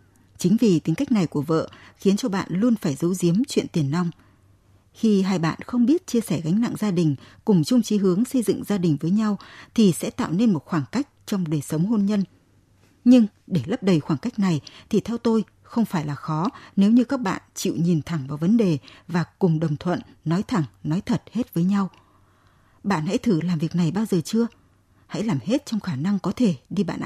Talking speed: 230 wpm